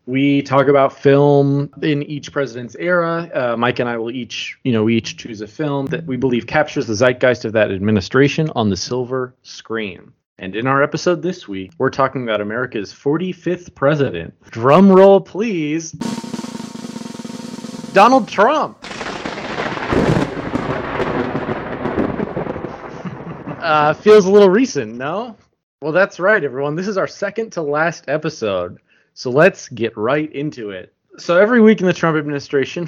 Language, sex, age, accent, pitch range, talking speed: English, male, 30-49, American, 125-170 Hz, 150 wpm